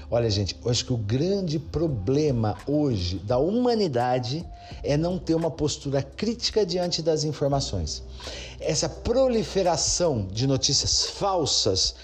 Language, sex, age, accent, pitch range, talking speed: Portuguese, male, 50-69, Brazilian, 120-195 Hz, 125 wpm